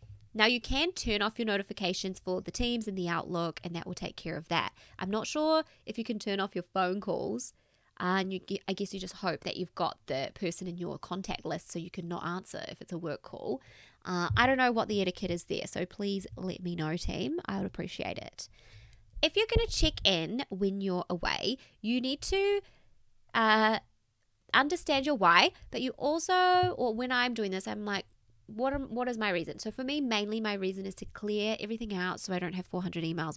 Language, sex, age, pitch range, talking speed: English, female, 20-39, 180-240 Hz, 225 wpm